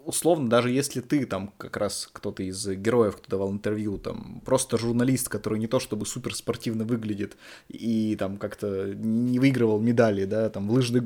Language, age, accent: Russian, 20-39, native